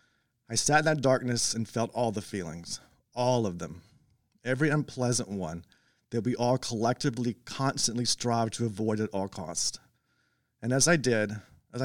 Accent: American